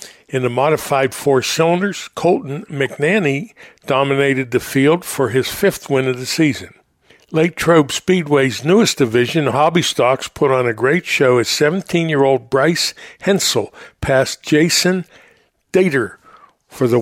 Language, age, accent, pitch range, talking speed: English, 60-79, American, 130-175 Hz, 130 wpm